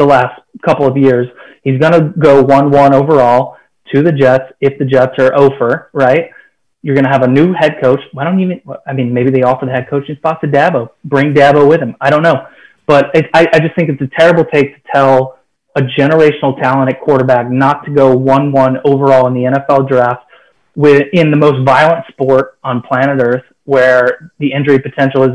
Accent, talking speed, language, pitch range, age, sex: American, 210 wpm, English, 130-145 Hz, 30-49, male